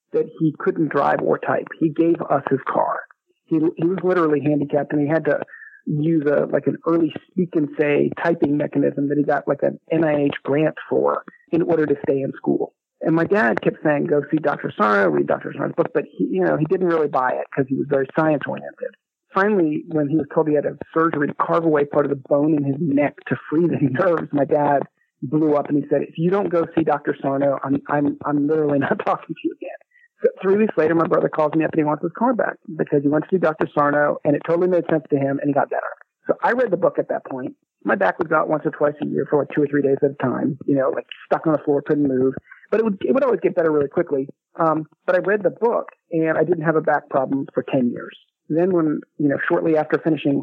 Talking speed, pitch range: 260 wpm, 145-165 Hz